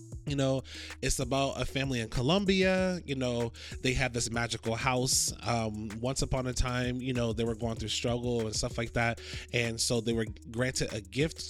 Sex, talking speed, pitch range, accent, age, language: male, 200 wpm, 115-135 Hz, American, 20-39, English